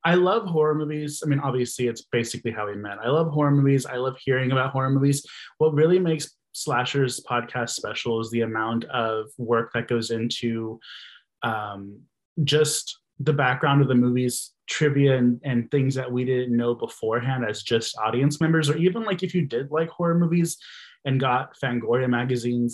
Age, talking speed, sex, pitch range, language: 20-39, 180 wpm, male, 120-150 Hz, English